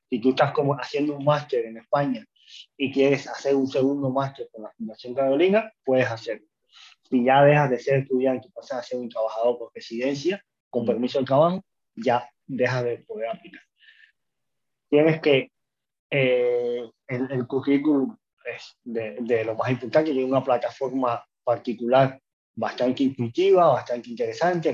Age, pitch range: 20-39, 125-155 Hz